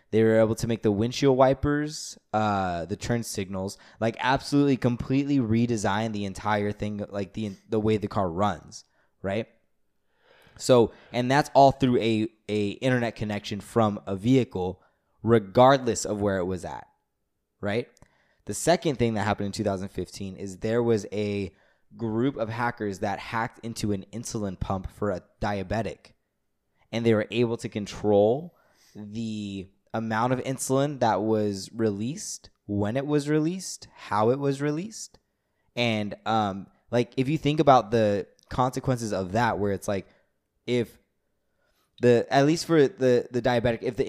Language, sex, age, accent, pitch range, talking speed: English, male, 20-39, American, 105-125 Hz, 155 wpm